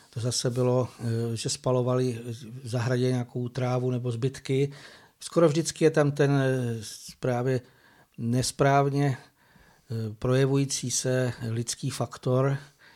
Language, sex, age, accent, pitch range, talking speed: Czech, male, 60-79, native, 115-130 Hz, 100 wpm